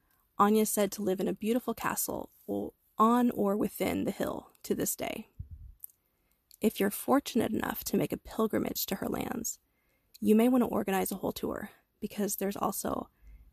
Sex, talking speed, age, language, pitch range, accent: female, 175 wpm, 20-39, English, 180-220 Hz, American